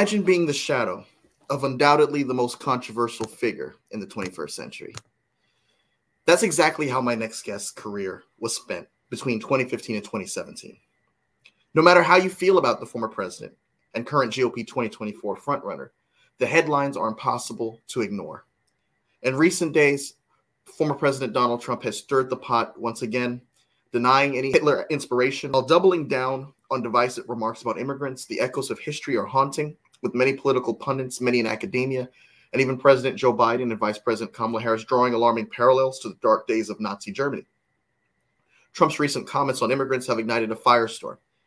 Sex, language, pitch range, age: male, English, 120-145 Hz, 30-49